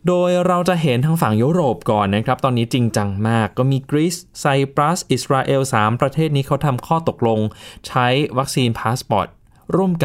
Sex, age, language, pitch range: male, 20-39, Thai, 115-145 Hz